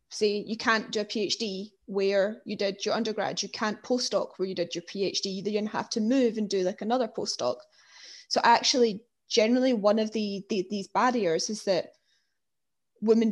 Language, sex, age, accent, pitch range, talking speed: English, female, 10-29, British, 205-240 Hz, 185 wpm